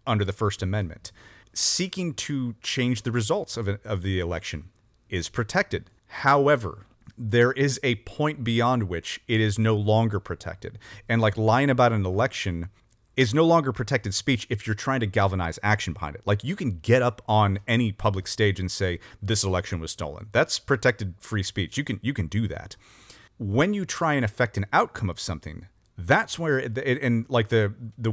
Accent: American